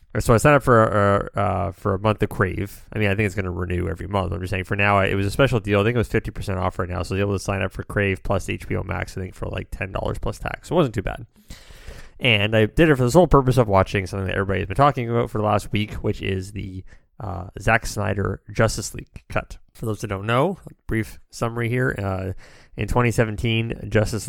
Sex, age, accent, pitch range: male, 20-39, American, 95-110 Hz